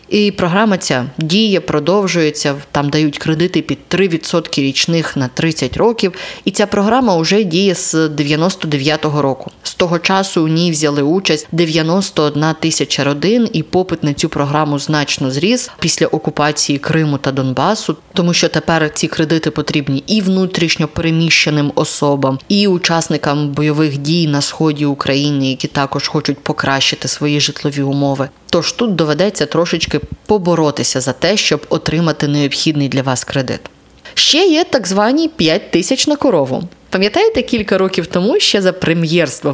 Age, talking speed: 20-39, 145 wpm